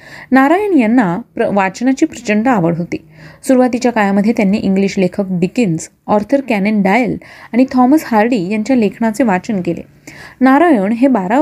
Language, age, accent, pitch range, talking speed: Marathi, 30-49, native, 195-260 Hz, 135 wpm